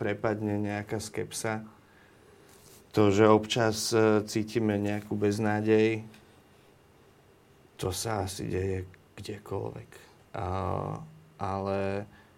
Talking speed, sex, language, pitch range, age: 80 wpm, male, Slovak, 100-110 Hz, 30-49